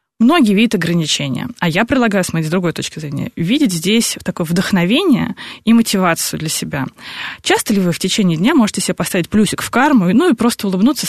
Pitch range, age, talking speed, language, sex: 165-210 Hz, 20-39, 190 wpm, Russian, female